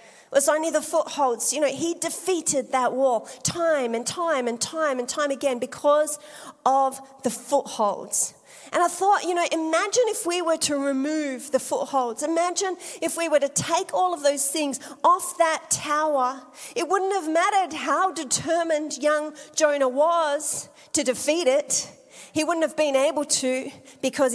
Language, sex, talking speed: English, female, 170 wpm